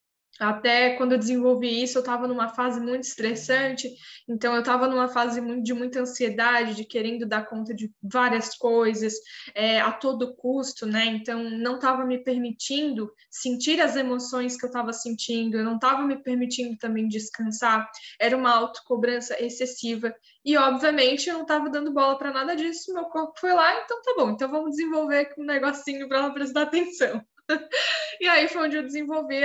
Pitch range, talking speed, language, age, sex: 225-280 Hz, 175 wpm, Portuguese, 10-29, female